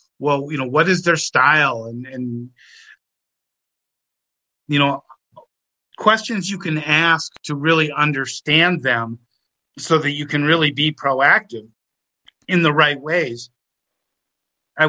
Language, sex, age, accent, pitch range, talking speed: English, male, 50-69, American, 135-170 Hz, 125 wpm